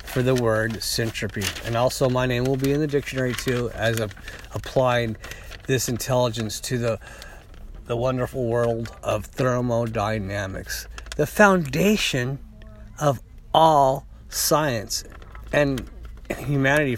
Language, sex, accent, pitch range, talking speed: English, male, American, 100-130 Hz, 115 wpm